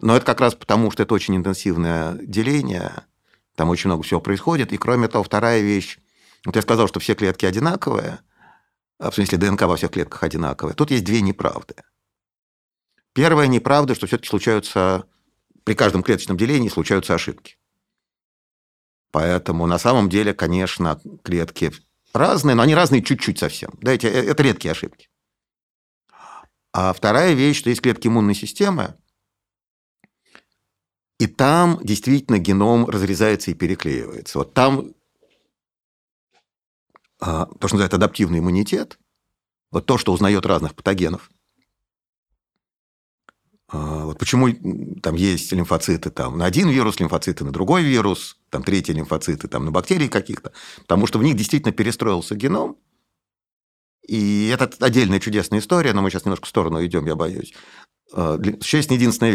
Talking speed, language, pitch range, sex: 140 wpm, Russian, 90-120 Hz, male